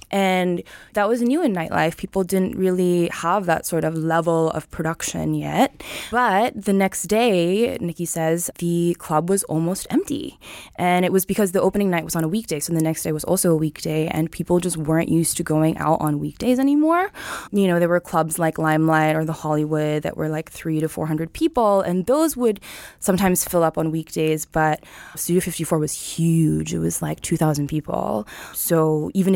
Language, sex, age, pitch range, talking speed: English, female, 20-39, 155-185 Hz, 195 wpm